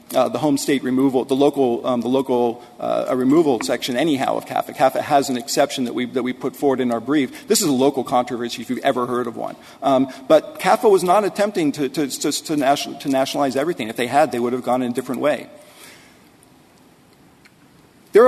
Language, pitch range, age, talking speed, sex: English, 130-175 Hz, 40-59, 210 wpm, male